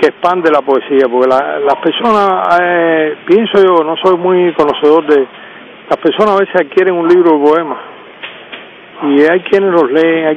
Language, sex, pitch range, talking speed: Spanish, male, 145-185 Hz, 180 wpm